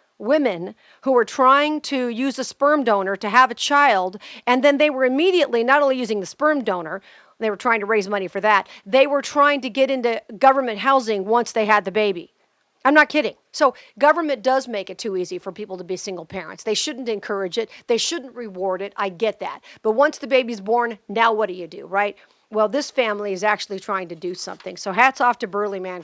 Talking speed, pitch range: 225 wpm, 200-255 Hz